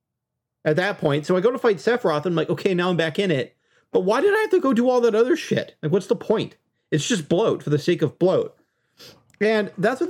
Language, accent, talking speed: English, American, 265 wpm